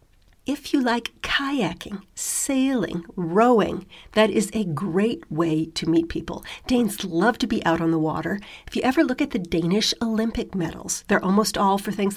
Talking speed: 180 wpm